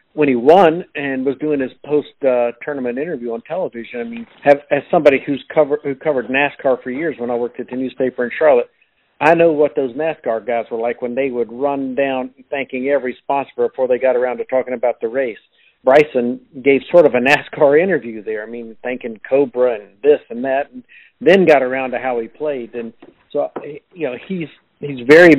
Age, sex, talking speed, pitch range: 50-69, male, 205 wpm, 125-150 Hz